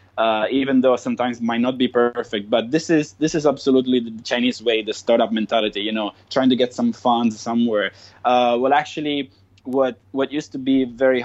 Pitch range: 105-125 Hz